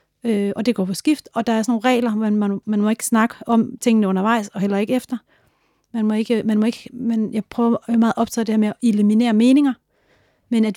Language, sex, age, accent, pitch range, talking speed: Danish, female, 30-49, native, 205-230 Hz, 240 wpm